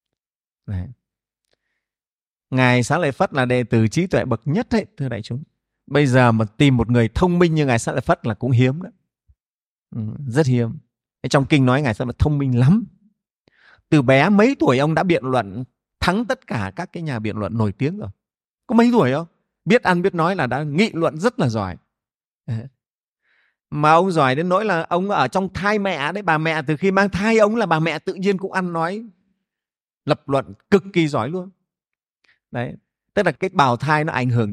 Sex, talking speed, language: male, 210 wpm, Vietnamese